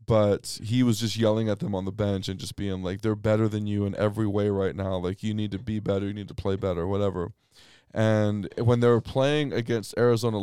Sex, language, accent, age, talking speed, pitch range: male, English, American, 20-39, 240 wpm, 100-130 Hz